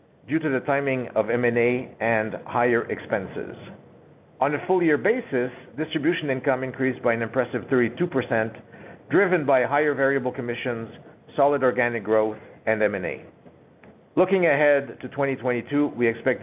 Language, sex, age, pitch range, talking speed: English, male, 50-69, 115-145 Hz, 130 wpm